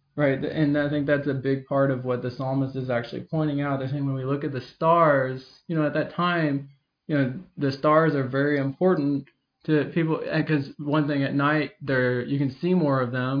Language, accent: English, American